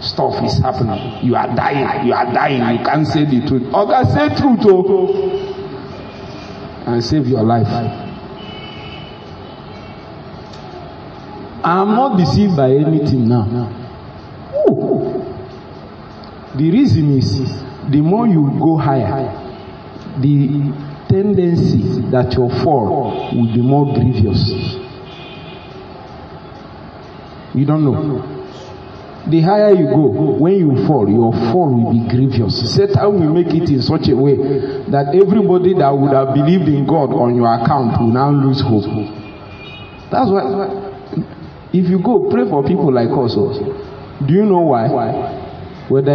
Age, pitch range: 50-69, 120-155 Hz